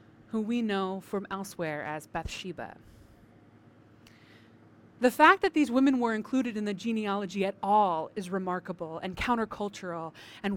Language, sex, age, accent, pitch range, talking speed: English, female, 30-49, American, 165-240 Hz, 135 wpm